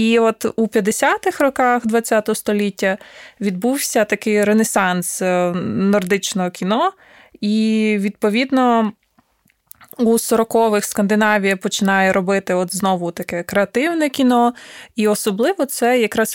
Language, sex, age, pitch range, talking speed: Ukrainian, female, 20-39, 195-235 Hz, 105 wpm